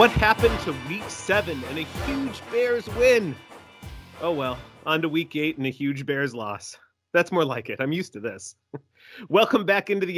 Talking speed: 195 wpm